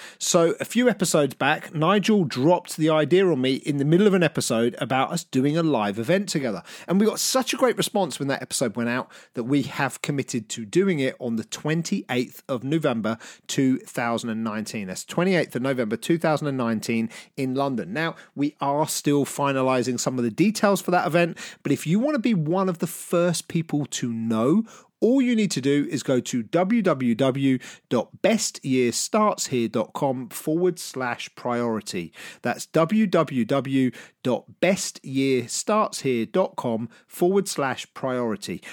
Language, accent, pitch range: English, British, 125-180 Hz